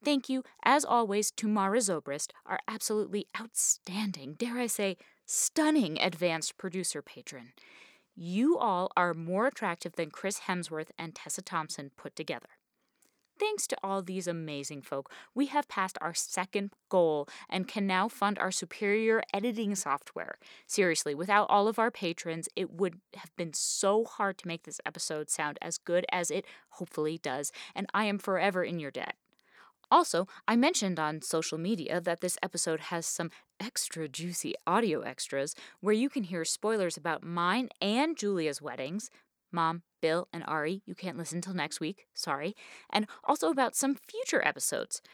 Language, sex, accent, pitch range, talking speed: English, female, American, 165-220 Hz, 160 wpm